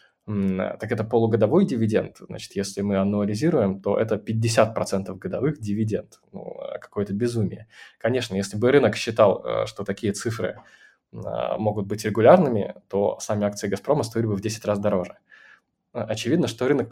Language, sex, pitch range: Russian, male, 100-130 Hz